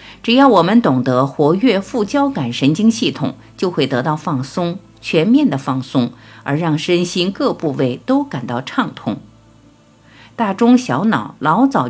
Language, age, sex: Chinese, 50-69, female